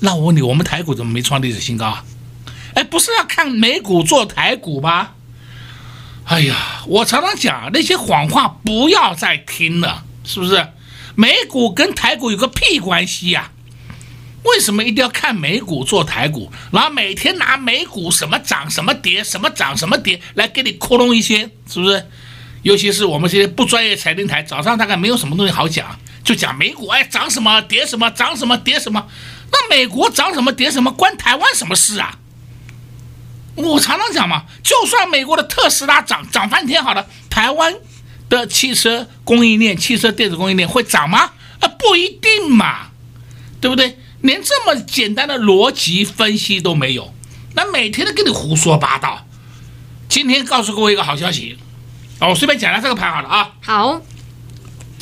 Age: 60-79